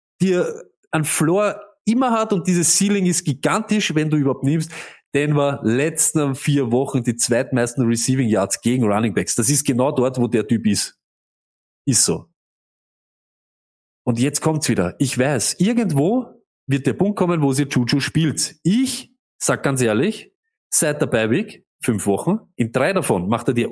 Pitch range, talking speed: 115-160 Hz, 170 wpm